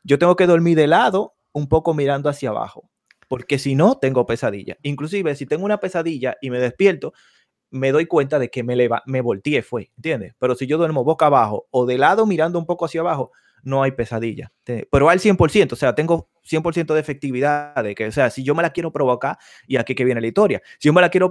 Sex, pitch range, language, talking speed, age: male, 125-160 Hz, Spanish, 235 wpm, 20-39